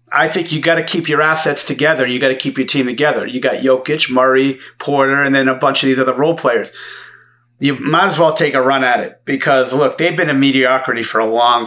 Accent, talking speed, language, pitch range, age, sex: American, 245 wpm, English, 125-150 Hz, 40-59, male